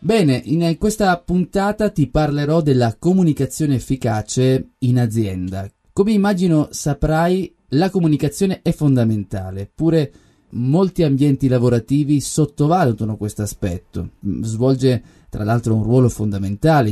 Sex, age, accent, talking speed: male, 20-39, native, 110 wpm